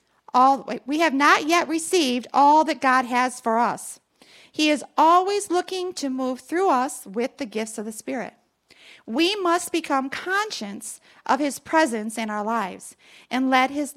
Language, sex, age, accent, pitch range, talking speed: English, female, 40-59, American, 215-300 Hz, 165 wpm